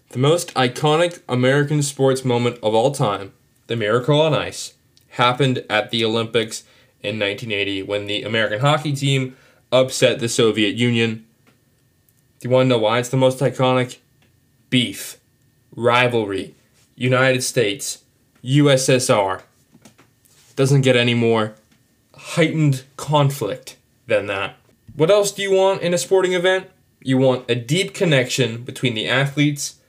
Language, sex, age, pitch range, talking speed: English, male, 10-29, 125-150 Hz, 135 wpm